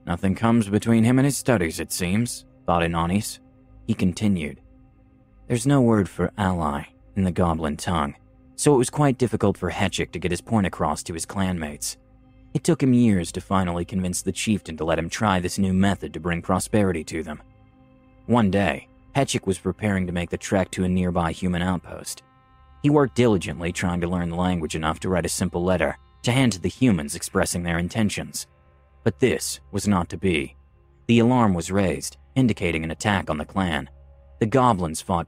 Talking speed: 190 wpm